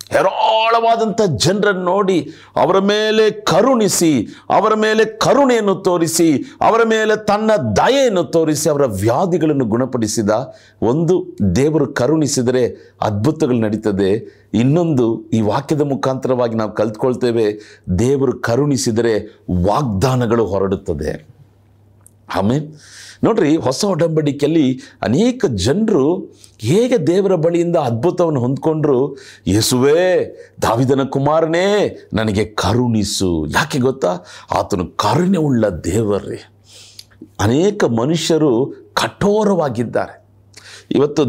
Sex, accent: male, native